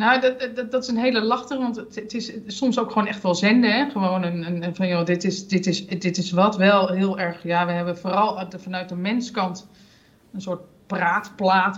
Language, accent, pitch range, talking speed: Dutch, Dutch, 180-215 Hz, 225 wpm